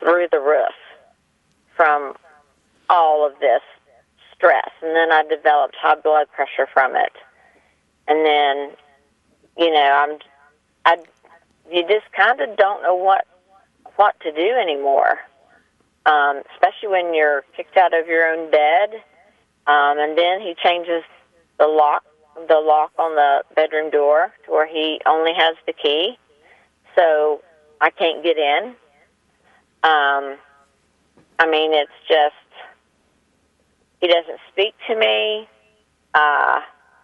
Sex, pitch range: female, 145-170 Hz